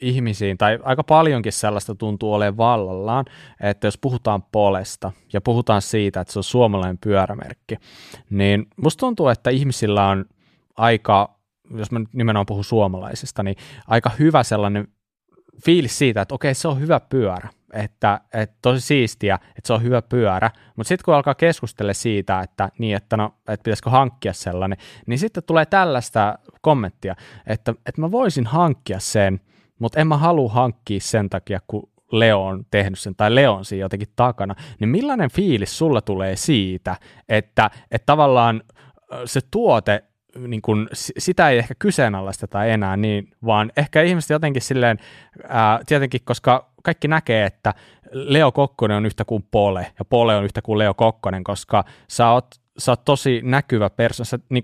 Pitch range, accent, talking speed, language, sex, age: 100-130 Hz, native, 160 wpm, Finnish, male, 20-39